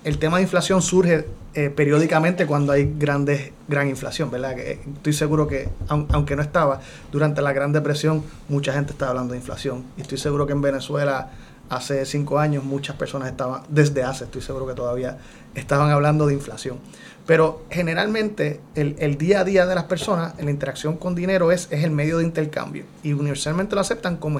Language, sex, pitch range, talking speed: Spanish, male, 140-165 Hz, 185 wpm